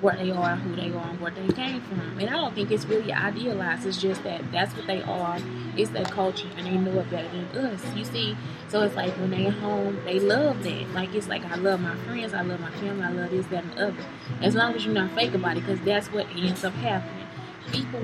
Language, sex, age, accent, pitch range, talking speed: English, female, 20-39, American, 180-220 Hz, 255 wpm